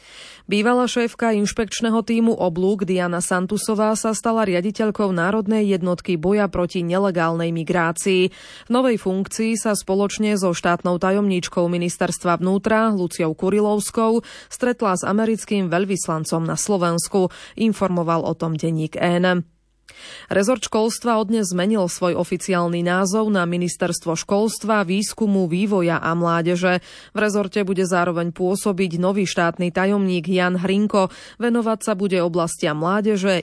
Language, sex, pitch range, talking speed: Slovak, female, 175-210 Hz, 120 wpm